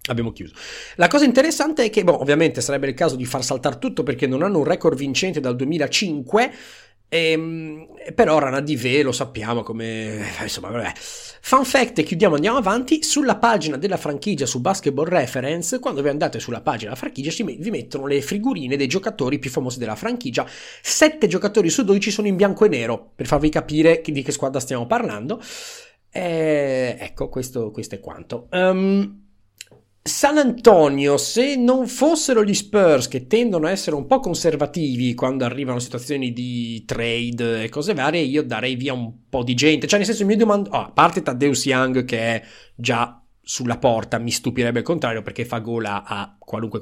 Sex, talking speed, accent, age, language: male, 185 wpm, native, 30-49, Italian